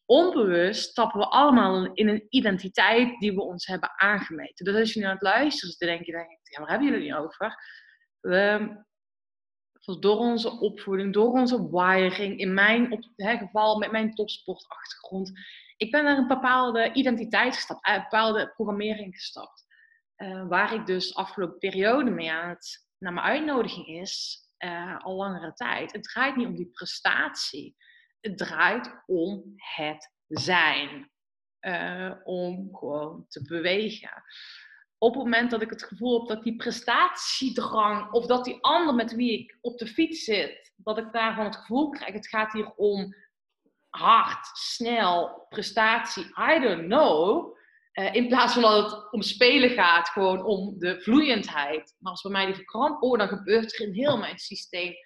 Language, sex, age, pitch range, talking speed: Dutch, female, 20-39, 190-240 Hz, 165 wpm